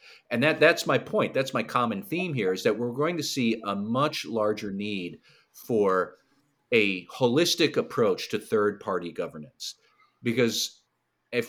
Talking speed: 150 wpm